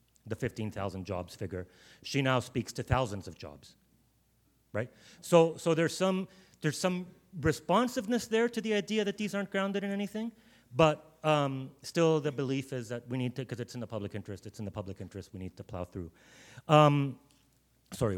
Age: 30-49